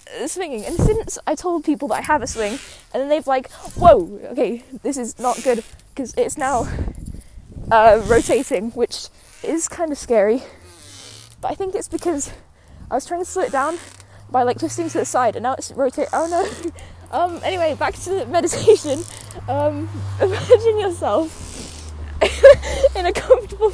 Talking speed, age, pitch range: 170 wpm, 10-29, 250-350 Hz